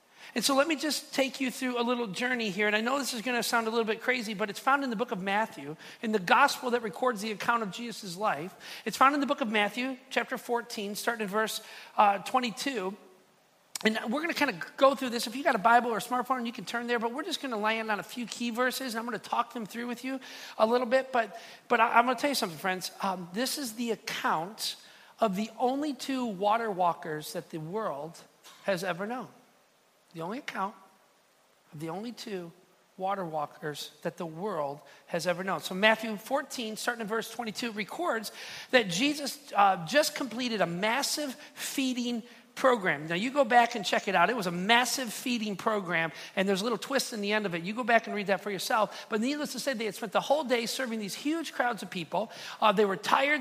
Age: 40-59